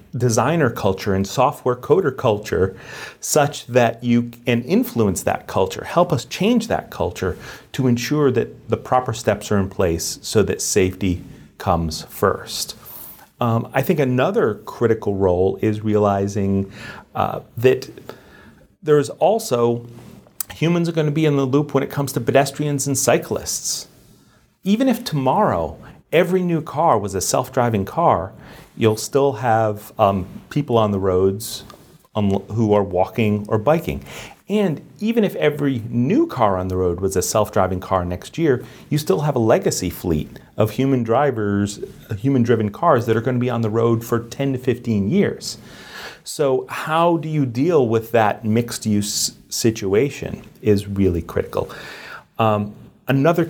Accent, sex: American, male